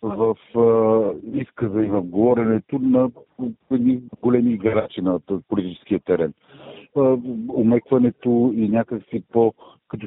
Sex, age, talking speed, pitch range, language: male, 50-69, 120 wpm, 110-125 Hz, Bulgarian